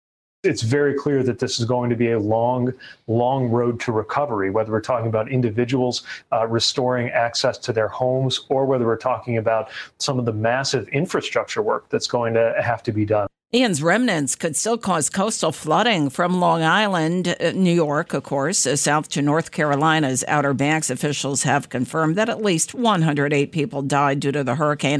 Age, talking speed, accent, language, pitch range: 50-69, 185 wpm, American, English, 135-180 Hz